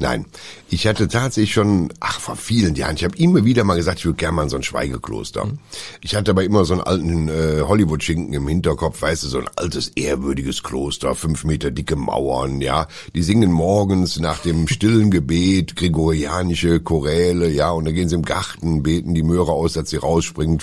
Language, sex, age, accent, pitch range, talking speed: German, male, 10-29, German, 80-120 Hz, 200 wpm